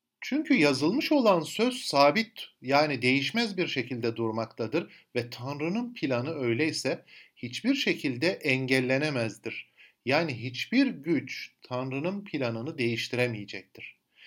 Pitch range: 115-175 Hz